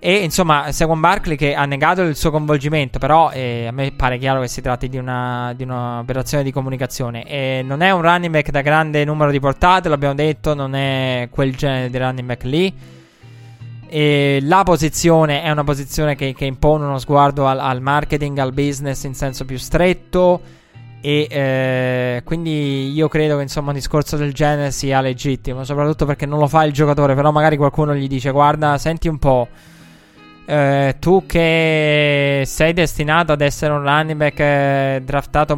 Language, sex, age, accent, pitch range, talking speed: Italian, male, 20-39, native, 135-155 Hz, 180 wpm